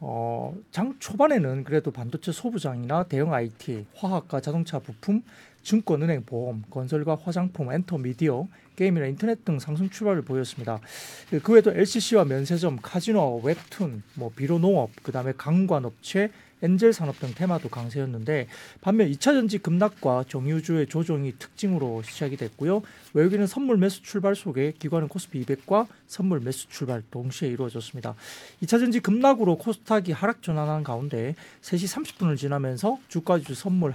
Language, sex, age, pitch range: Korean, male, 40-59, 135-200 Hz